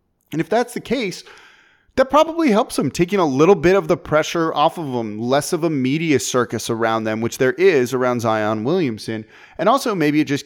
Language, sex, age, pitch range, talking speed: English, male, 30-49, 120-195 Hz, 210 wpm